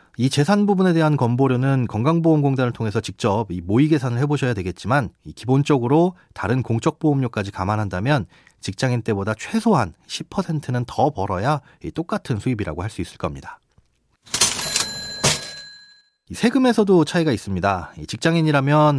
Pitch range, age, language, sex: 110-165 Hz, 30-49, Korean, male